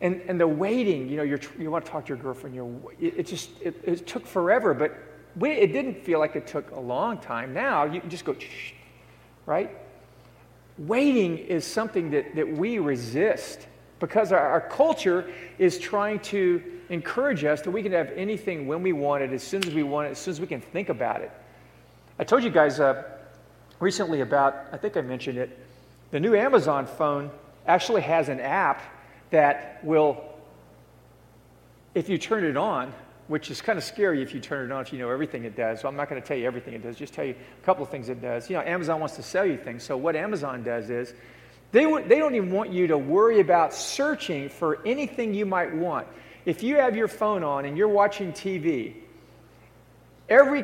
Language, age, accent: English, 40-59, American